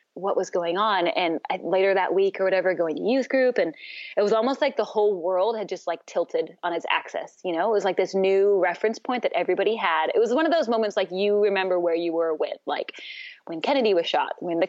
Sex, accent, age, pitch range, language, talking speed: female, American, 20-39, 185-250 Hz, English, 250 wpm